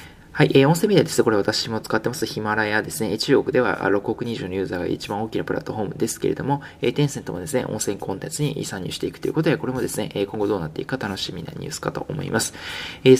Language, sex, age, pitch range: Japanese, male, 20-39, 115-160 Hz